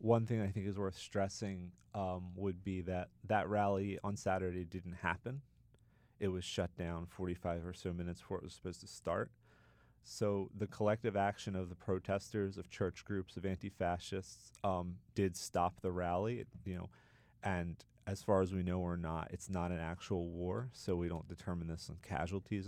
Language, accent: English, American